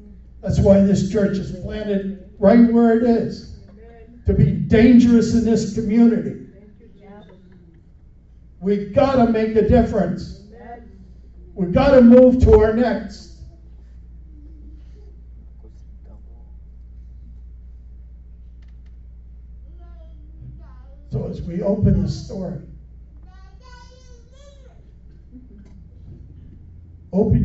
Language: English